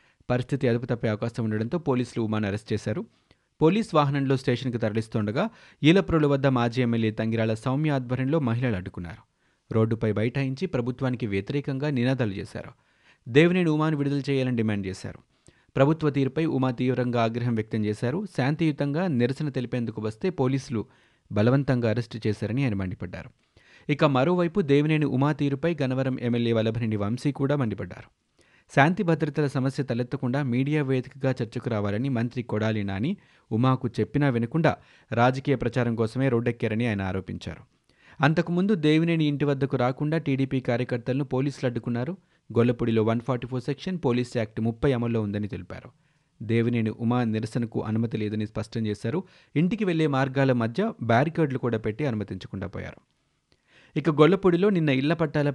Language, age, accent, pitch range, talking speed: Telugu, 30-49, native, 115-145 Hz, 130 wpm